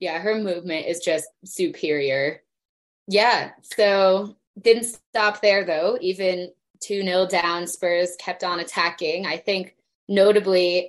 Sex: female